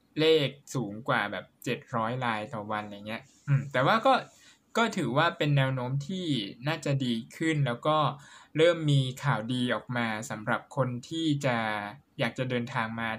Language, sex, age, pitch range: Thai, male, 20-39, 120-150 Hz